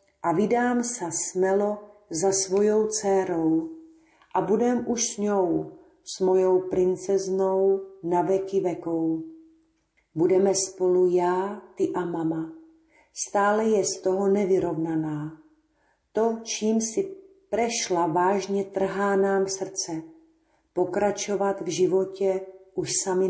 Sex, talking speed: female, 110 wpm